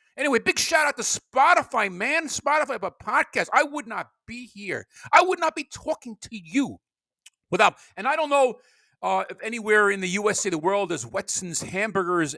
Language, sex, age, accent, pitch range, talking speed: English, male, 50-69, American, 155-230 Hz, 185 wpm